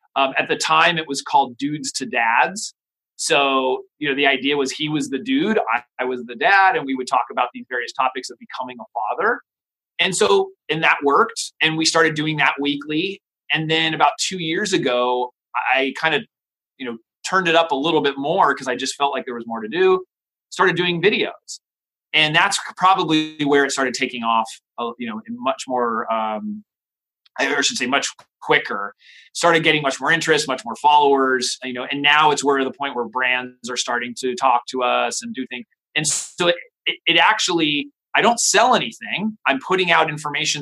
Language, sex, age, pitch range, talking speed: English, male, 30-49, 130-170 Hz, 205 wpm